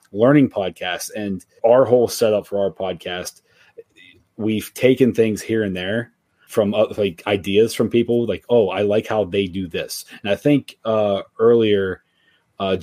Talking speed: 165 wpm